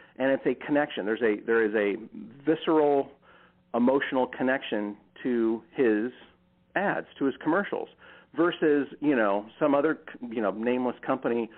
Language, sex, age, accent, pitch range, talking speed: English, male, 40-59, American, 115-150 Hz, 140 wpm